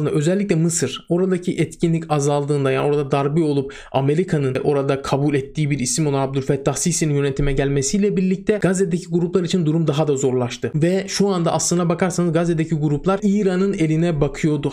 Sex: male